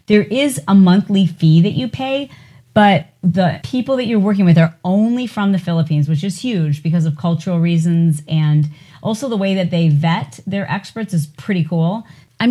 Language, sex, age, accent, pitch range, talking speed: English, female, 30-49, American, 155-195 Hz, 190 wpm